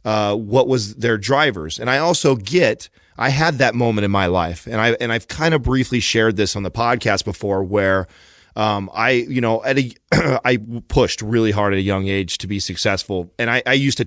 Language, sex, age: English, male, 30-49